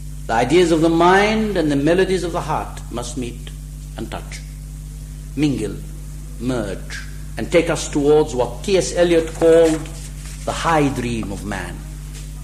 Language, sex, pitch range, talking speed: English, male, 145-185 Hz, 145 wpm